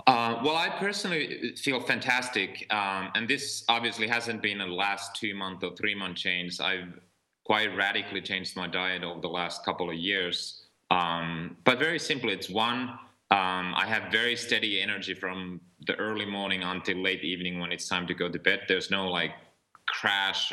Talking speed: 180 wpm